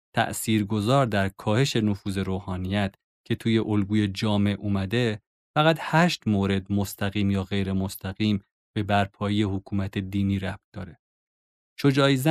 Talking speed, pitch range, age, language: 120 wpm, 100-125 Hz, 30-49, Persian